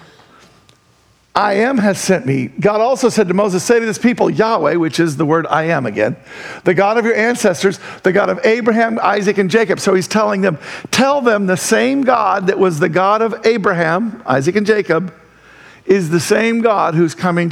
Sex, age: male, 50-69